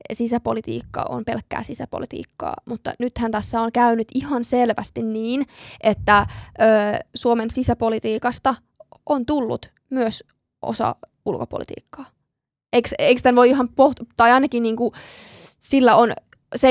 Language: Finnish